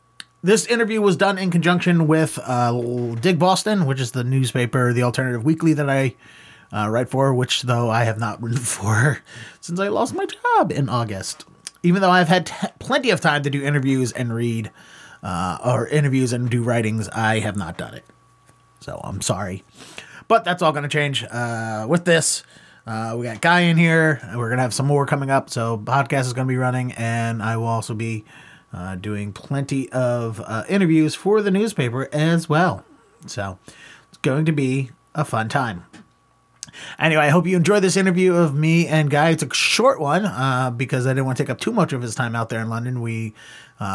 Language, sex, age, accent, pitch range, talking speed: English, male, 30-49, American, 120-160 Hz, 210 wpm